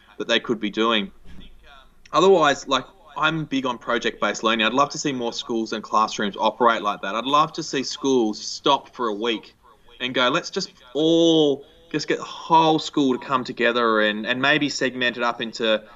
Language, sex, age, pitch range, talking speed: English, male, 20-39, 115-135 Hz, 195 wpm